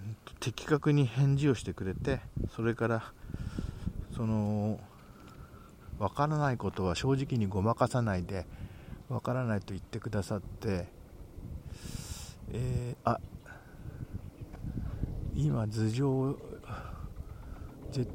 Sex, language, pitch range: male, Japanese, 100-130 Hz